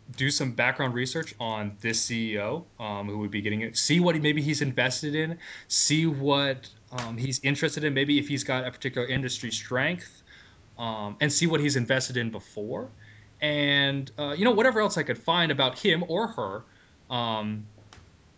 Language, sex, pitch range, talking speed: English, male, 110-145 Hz, 185 wpm